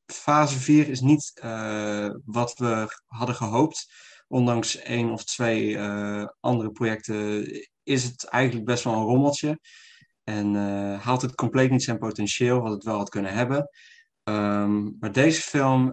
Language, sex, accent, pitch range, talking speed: Dutch, male, Dutch, 105-125 Hz, 155 wpm